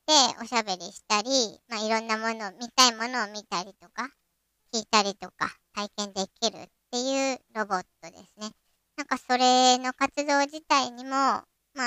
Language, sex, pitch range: Japanese, male, 210-270 Hz